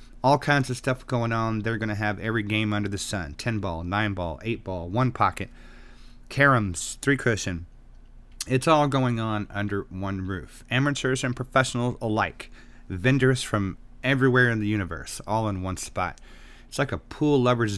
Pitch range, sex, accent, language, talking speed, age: 100-125 Hz, male, American, English, 175 wpm, 30-49